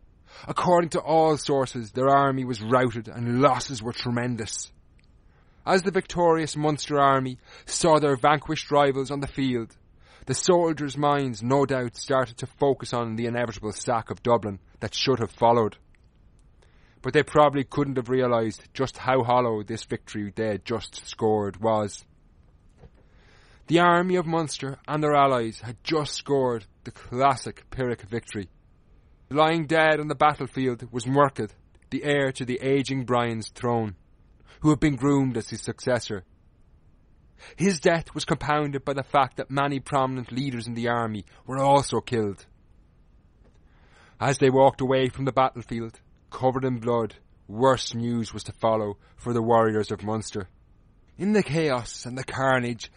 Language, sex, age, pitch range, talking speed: English, male, 30-49, 110-140 Hz, 155 wpm